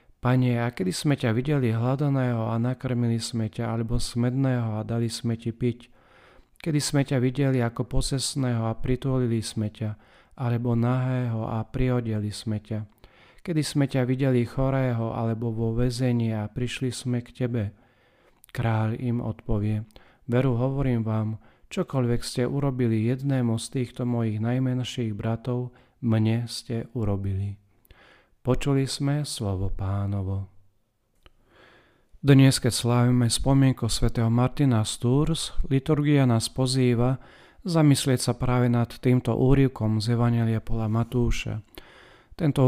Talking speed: 125 wpm